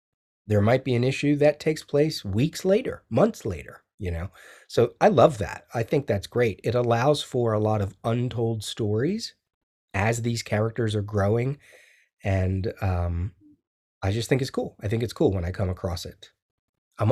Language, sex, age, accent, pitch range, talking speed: English, male, 30-49, American, 100-120 Hz, 180 wpm